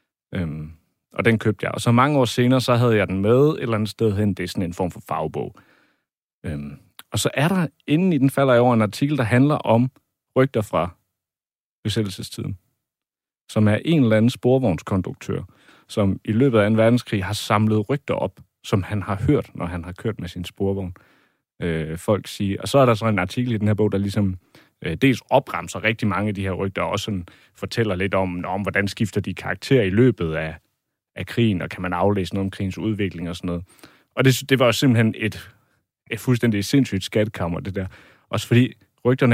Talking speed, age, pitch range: 215 wpm, 30-49, 95-120 Hz